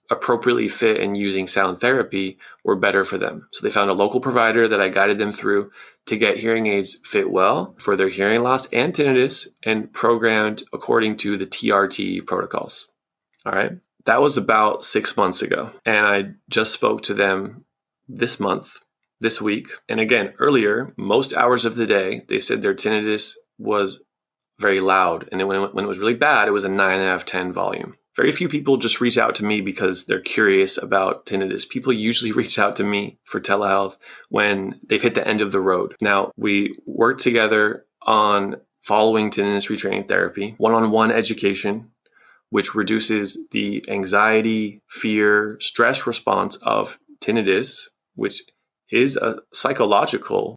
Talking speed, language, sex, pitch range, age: 165 wpm, English, male, 100-115 Hz, 20-39